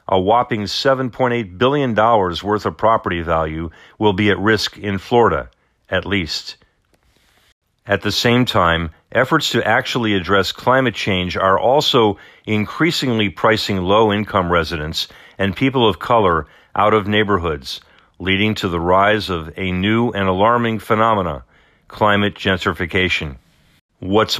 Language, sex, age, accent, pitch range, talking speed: English, male, 50-69, American, 90-110 Hz, 130 wpm